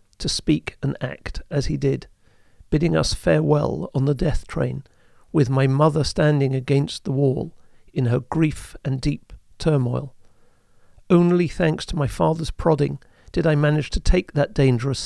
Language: English